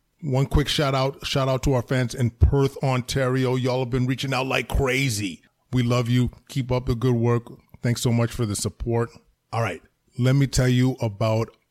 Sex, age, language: male, 20-39, English